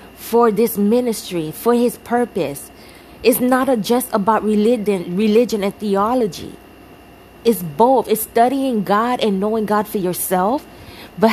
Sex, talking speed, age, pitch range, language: female, 140 wpm, 20-39, 200-240 Hz, English